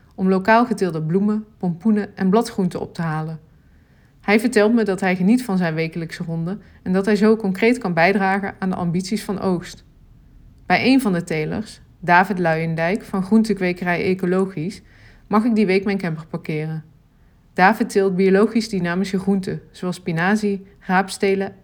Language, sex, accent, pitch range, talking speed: Dutch, female, Dutch, 175-210 Hz, 160 wpm